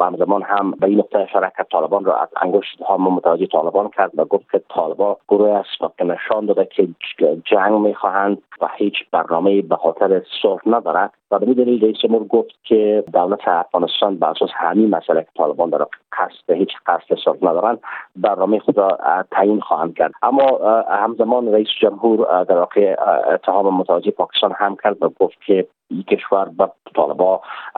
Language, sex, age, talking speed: Persian, male, 40-59, 160 wpm